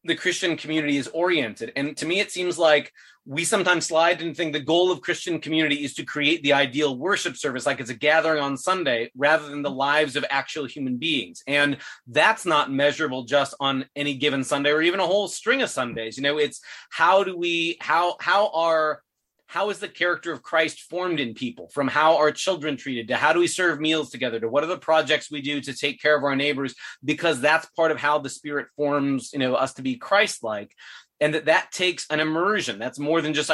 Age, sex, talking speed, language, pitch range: 30-49, male, 225 wpm, English, 140-165 Hz